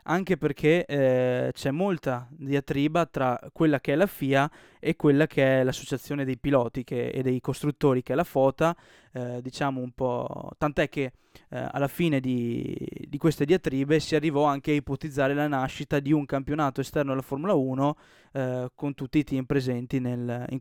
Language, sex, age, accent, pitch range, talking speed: Italian, male, 20-39, native, 130-150 Hz, 180 wpm